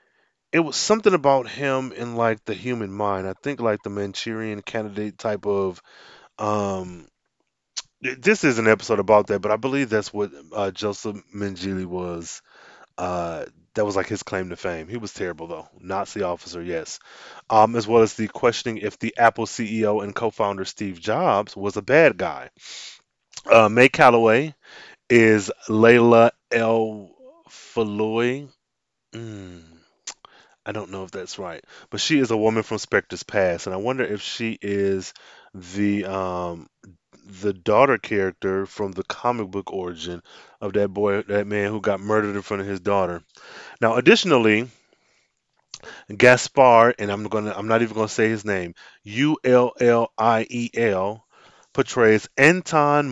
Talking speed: 155 wpm